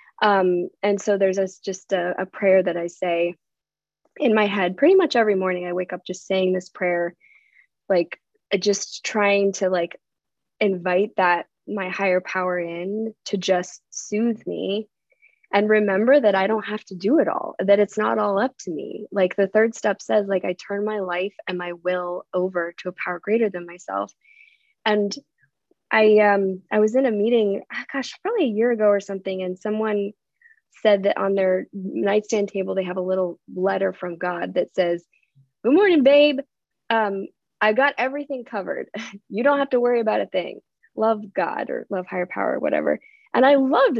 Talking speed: 185 wpm